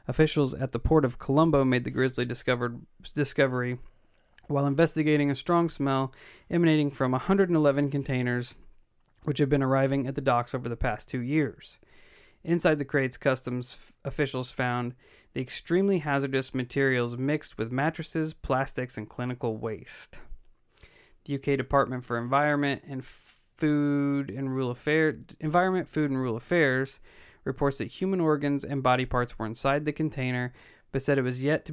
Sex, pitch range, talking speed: male, 125-150 Hz, 155 wpm